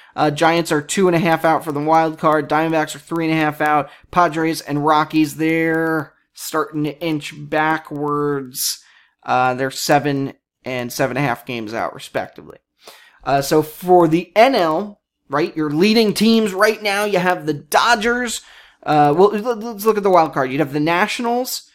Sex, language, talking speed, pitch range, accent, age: male, English, 180 wpm, 145-180 Hz, American, 20-39